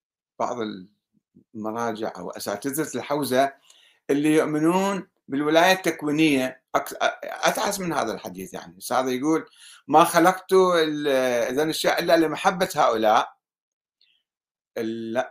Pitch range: 120-175 Hz